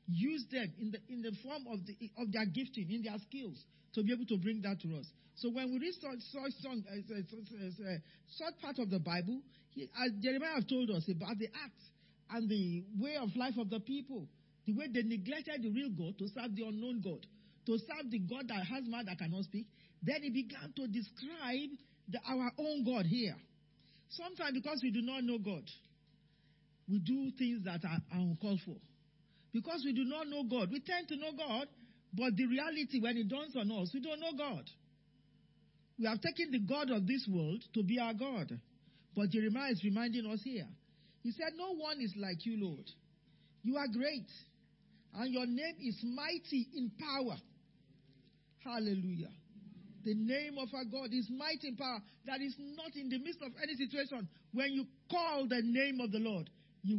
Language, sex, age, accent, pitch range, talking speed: English, male, 50-69, Nigerian, 200-265 Hz, 200 wpm